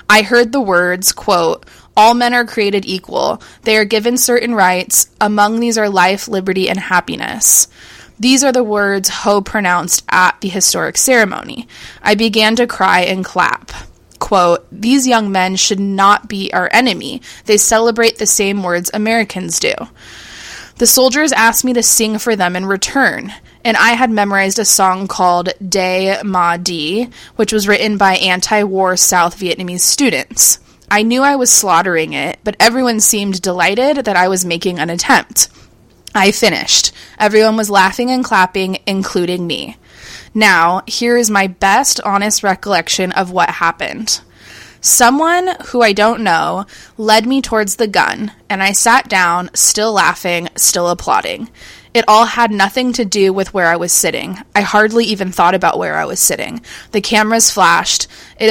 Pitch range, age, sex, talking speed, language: 185-230 Hz, 20-39, female, 165 wpm, English